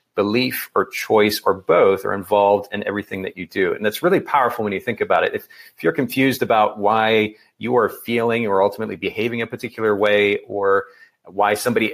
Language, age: English, 40-59